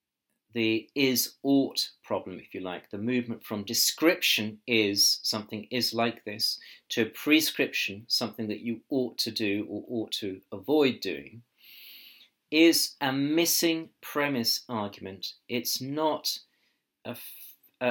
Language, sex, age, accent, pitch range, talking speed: English, male, 40-59, British, 110-145 Hz, 120 wpm